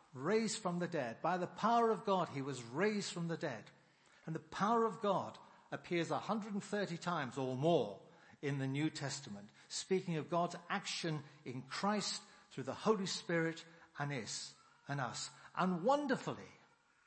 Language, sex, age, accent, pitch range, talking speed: English, male, 60-79, British, 140-195 Hz, 155 wpm